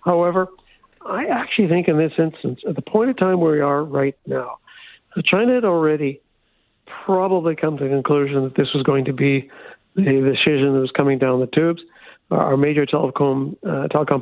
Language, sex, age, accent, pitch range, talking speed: English, male, 60-79, American, 140-170 Hz, 185 wpm